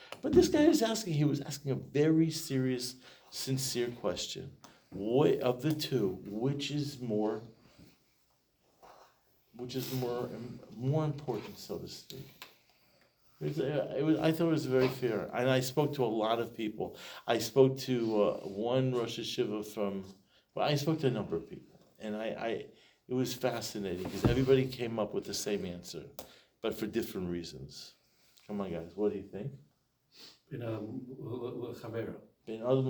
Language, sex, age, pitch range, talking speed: English, male, 50-69, 110-145 Hz, 160 wpm